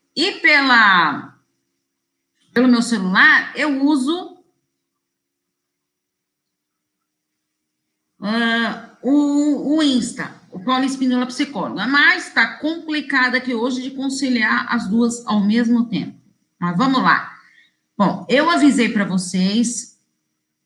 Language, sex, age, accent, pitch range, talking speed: Portuguese, female, 40-59, Brazilian, 195-270 Hz, 95 wpm